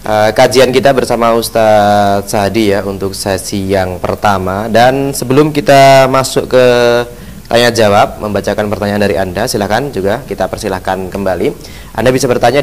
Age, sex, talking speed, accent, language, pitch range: 30-49, male, 140 wpm, native, Indonesian, 100-125 Hz